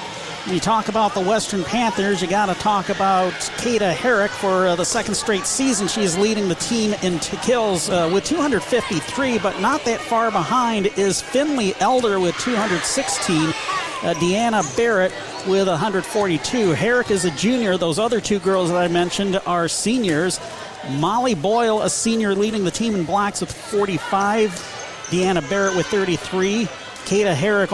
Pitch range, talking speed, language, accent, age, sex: 185-230 Hz, 160 wpm, English, American, 40-59, male